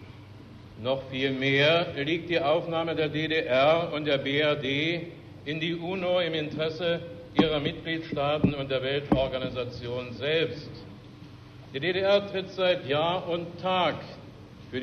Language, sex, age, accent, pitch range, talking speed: German, male, 60-79, German, 130-165 Hz, 120 wpm